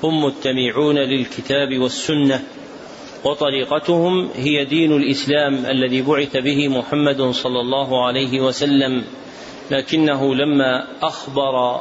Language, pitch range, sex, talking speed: Arabic, 130-145 Hz, male, 95 wpm